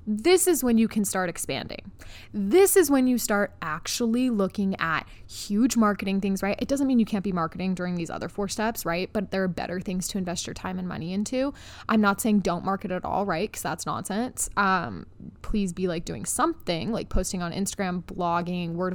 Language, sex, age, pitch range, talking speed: English, female, 20-39, 185-230 Hz, 210 wpm